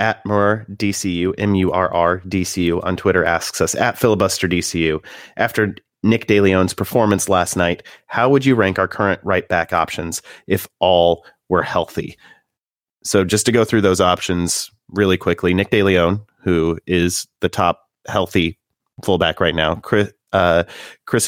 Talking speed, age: 160 wpm, 30-49